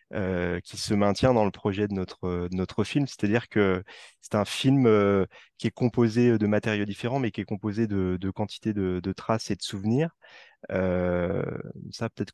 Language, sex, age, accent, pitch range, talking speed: French, male, 20-39, French, 95-115 Hz, 195 wpm